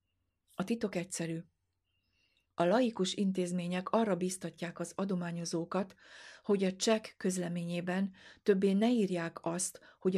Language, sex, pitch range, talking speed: Hungarian, female, 165-190 Hz, 110 wpm